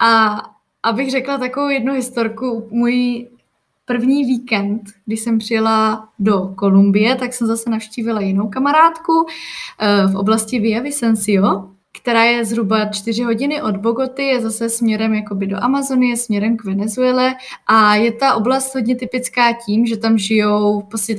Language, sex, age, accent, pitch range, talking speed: Czech, female, 20-39, native, 205-250 Hz, 140 wpm